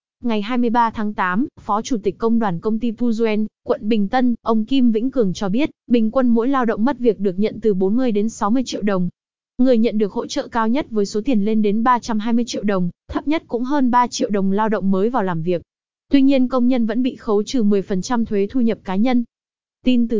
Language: Vietnamese